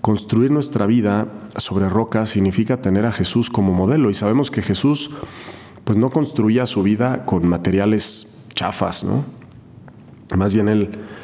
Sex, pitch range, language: male, 95-110 Hz, Spanish